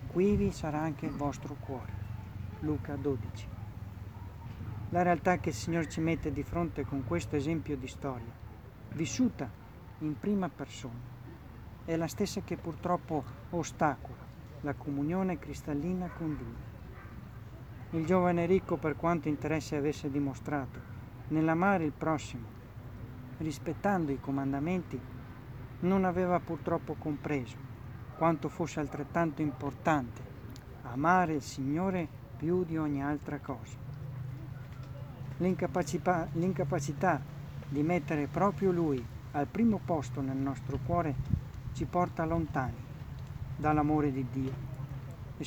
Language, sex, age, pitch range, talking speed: Italian, male, 40-59, 125-165 Hz, 115 wpm